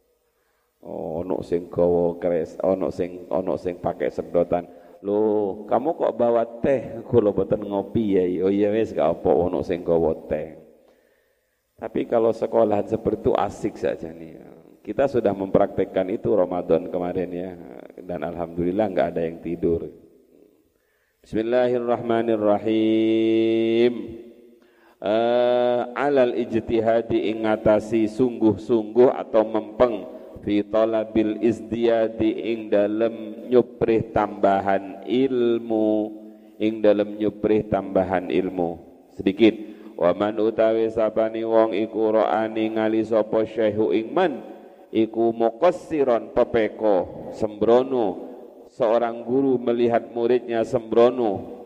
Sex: male